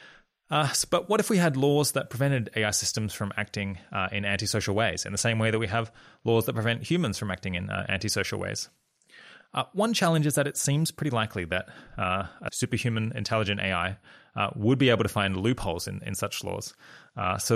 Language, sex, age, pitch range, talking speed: English, male, 20-39, 95-115 Hz, 210 wpm